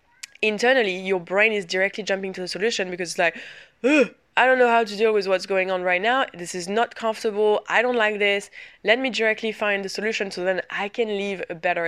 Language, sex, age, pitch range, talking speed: English, female, 20-39, 185-235 Hz, 225 wpm